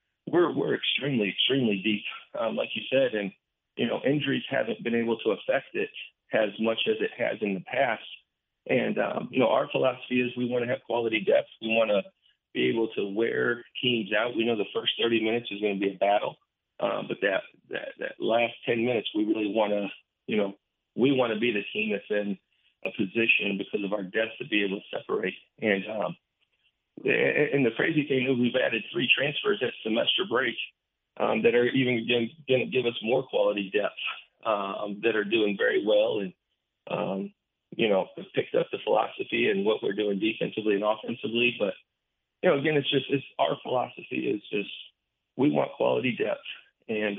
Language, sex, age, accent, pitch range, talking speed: English, male, 40-59, American, 105-135 Hz, 200 wpm